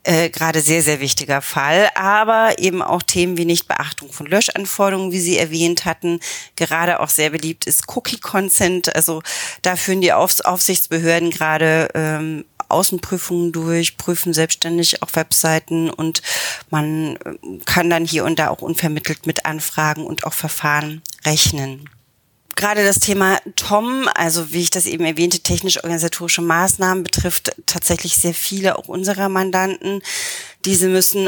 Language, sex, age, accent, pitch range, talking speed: German, female, 30-49, German, 165-185 Hz, 140 wpm